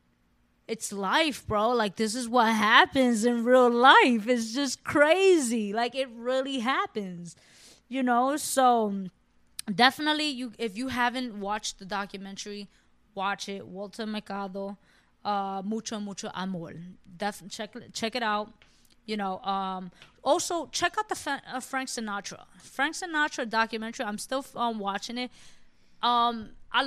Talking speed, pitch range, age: 140 wpm, 200-255 Hz, 20-39